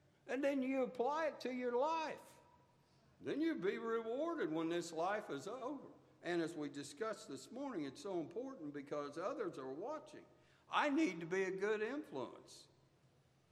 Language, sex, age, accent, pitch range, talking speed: English, male, 60-79, American, 130-185 Hz, 165 wpm